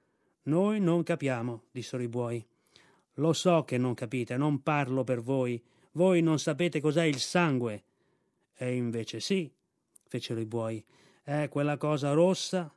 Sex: male